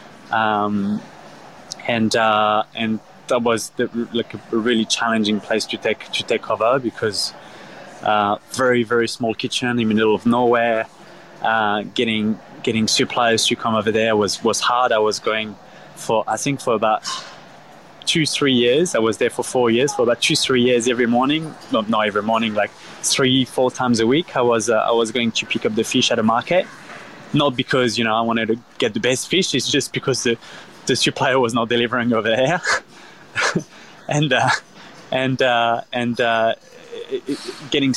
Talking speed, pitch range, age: 185 wpm, 110-125 Hz, 20-39